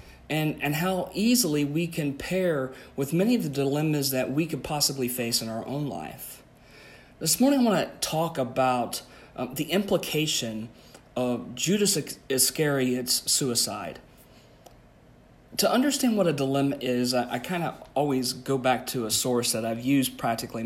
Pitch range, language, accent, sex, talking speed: 125-160 Hz, English, American, male, 160 wpm